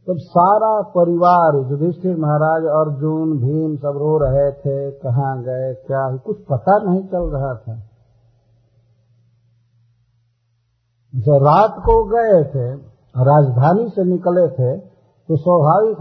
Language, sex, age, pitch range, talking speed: Hindi, male, 50-69, 115-165 Hz, 120 wpm